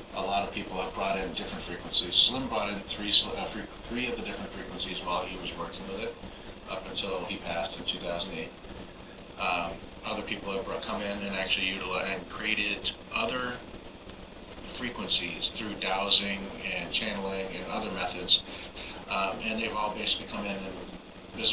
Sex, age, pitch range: male, 40-59, 95-105 Hz